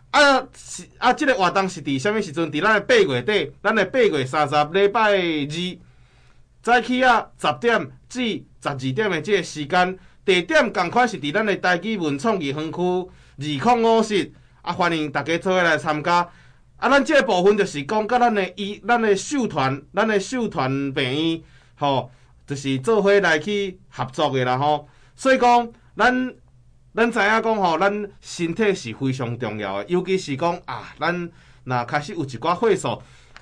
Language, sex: Chinese, male